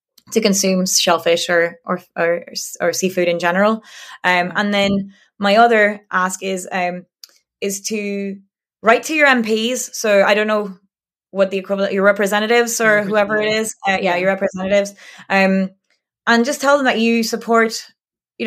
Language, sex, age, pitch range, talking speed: English, female, 20-39, 185-215 Hz, 160 wpm